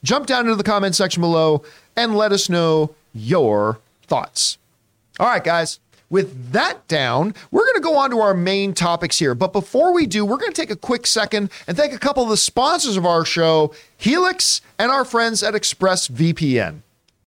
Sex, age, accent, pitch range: male, 40-59, American, 145-205 Hz